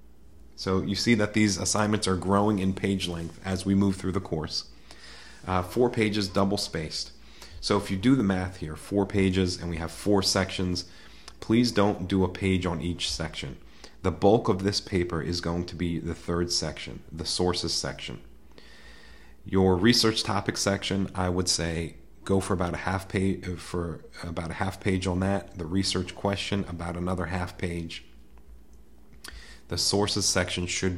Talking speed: 175 wpm